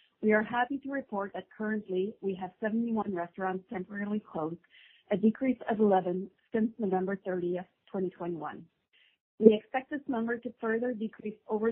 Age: 30-49